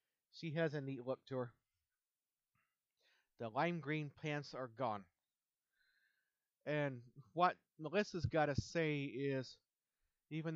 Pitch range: 130-165 Hz